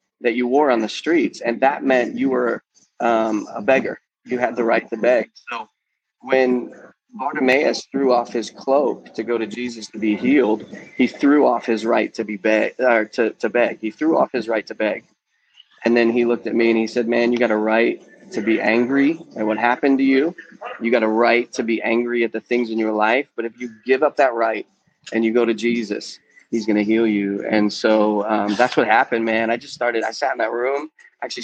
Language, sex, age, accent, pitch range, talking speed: English, male, 30-49, American, 110-140 Hz, 230 wpm